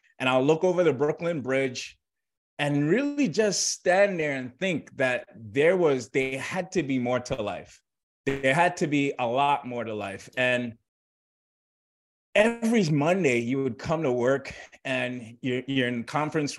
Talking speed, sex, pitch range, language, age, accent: 165 wpm, male, 120-155 Hz, English, 30-49, American